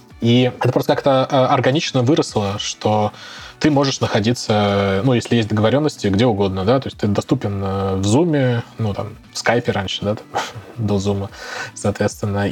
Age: 20-39